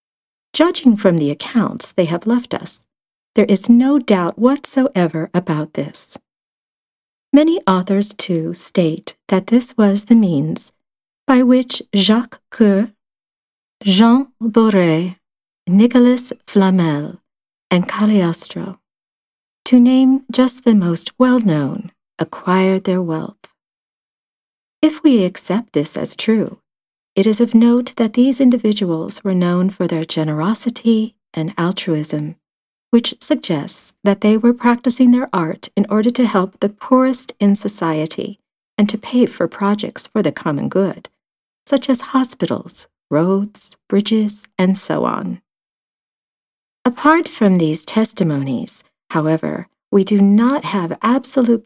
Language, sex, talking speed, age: English, female, 125 wpm, 50-69